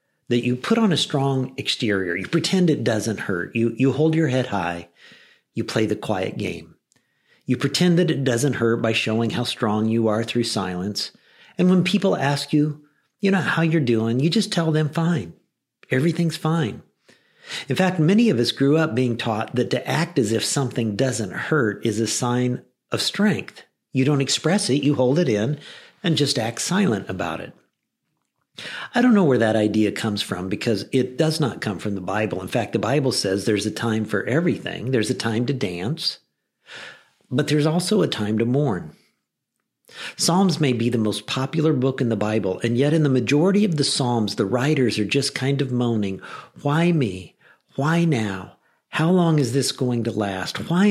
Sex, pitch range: male, 115-160 Hz